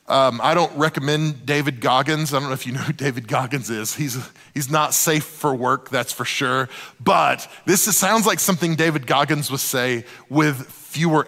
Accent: American